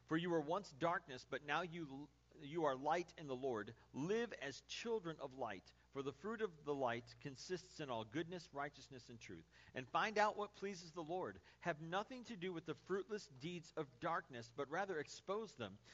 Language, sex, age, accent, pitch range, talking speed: English, male, 50-69, American, 130-185 Hz, 200 wpm